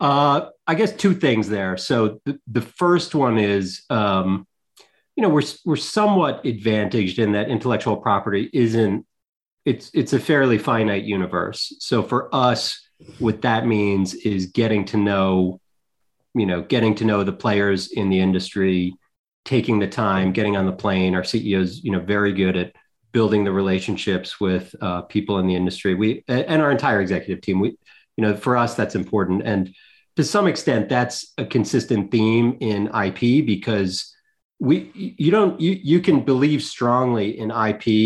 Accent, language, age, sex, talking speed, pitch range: American, English, 30-49, male, 170 wpm, 95-120 Hz